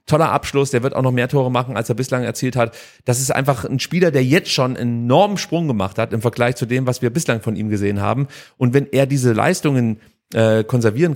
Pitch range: 115-140 Hz